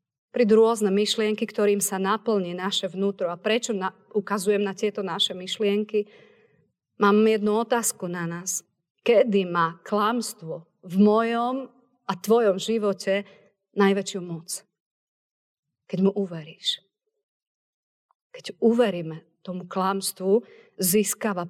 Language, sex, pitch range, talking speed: Slovak, female, 185-215 Hz, 110 wpm